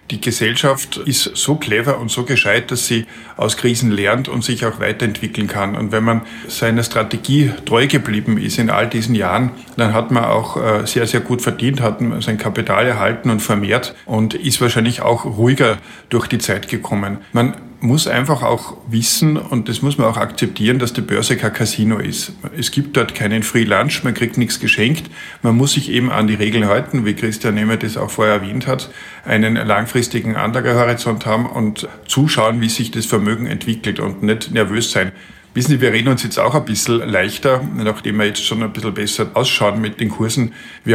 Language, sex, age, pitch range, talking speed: German, male, 50-69, 110-125 Hz, 195 wpm